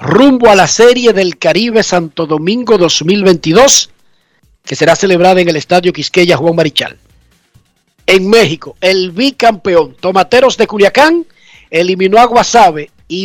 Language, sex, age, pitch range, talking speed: Spanish, male, 50-69, 165-220 Hz, 130 wpm